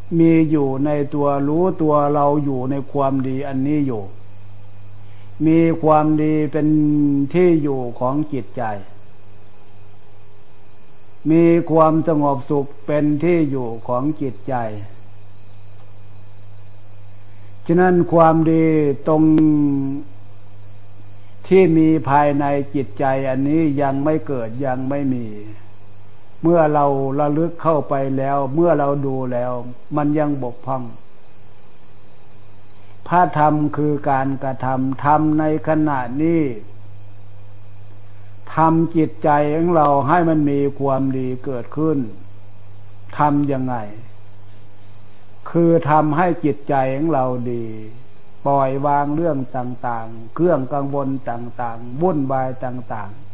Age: 60-79